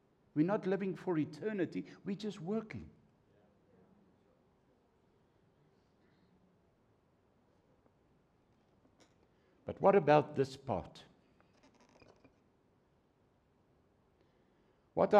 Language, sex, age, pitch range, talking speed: English, male, 60-79, 155-210 Hz, 55 wpm